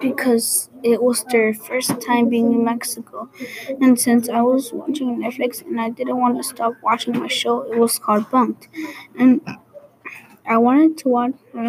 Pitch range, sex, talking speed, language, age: 230-265 Hz, female, 170 wpm, English, 20-39